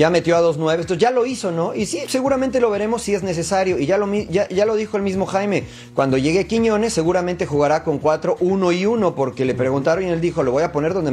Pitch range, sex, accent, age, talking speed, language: 160-210 Hz, male, Mexican, 40-59, 260 wpm, Spanish